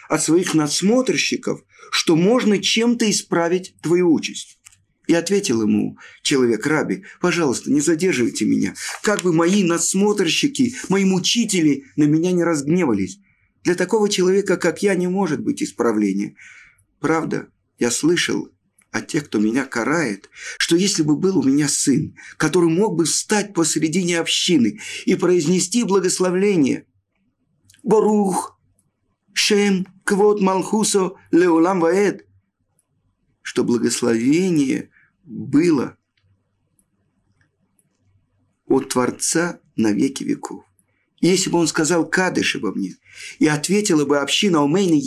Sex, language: male, Russian